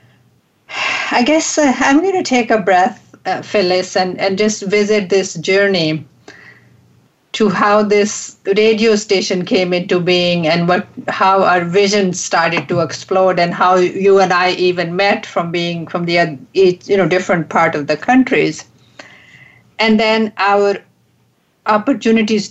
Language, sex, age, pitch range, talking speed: English, female, 50-69, 180-215 Hz, 145 wpm